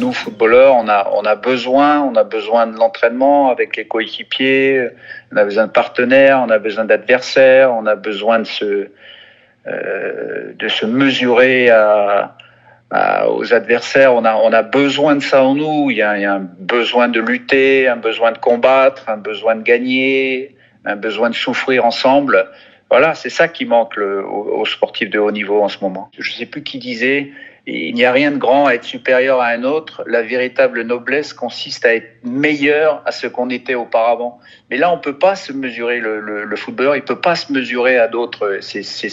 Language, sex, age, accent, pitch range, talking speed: French, male, 50-69, French, 115-145 Hz, 205 wpm